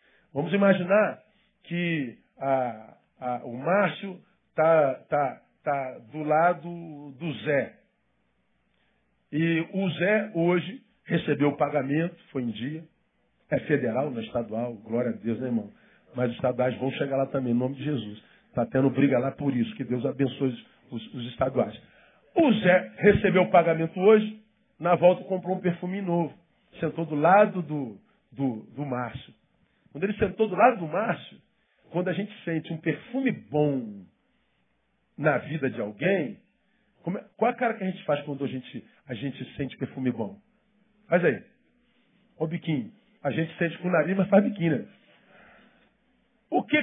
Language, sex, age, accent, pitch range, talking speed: Portuguese, male, 50-69, Brazilian, 130-190 Hz, 160 wpm